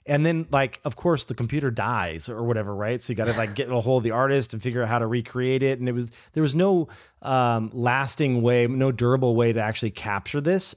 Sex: male